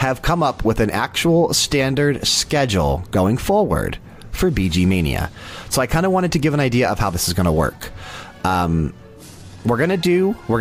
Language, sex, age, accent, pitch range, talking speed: English, male, 30-49, American, 90-135 Hz, 190 wpm